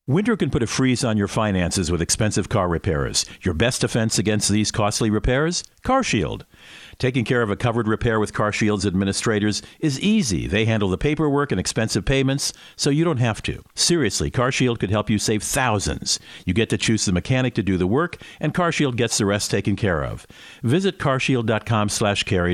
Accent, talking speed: American, 190 wpm